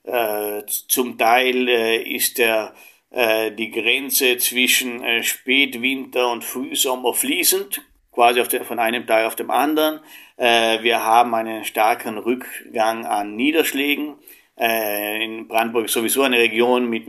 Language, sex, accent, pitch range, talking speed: German, male, German, 115-130 Hz, 140 wpm